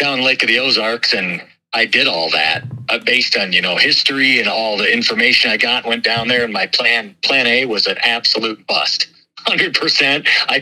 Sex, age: male, 40-59